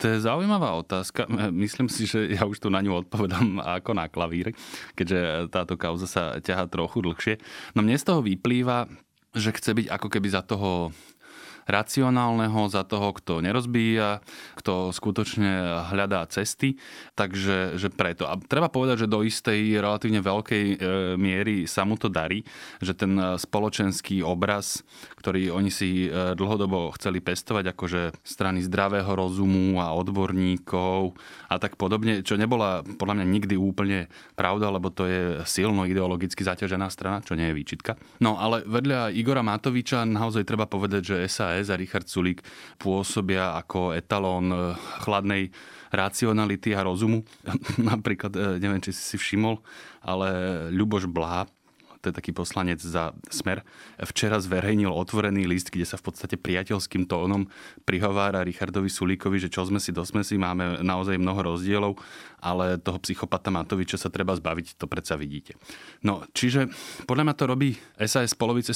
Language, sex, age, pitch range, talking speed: Slovak, male, 20-39, 90-110 Hz, 150 wpm